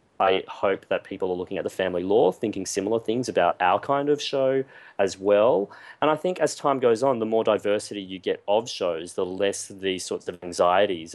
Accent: Australian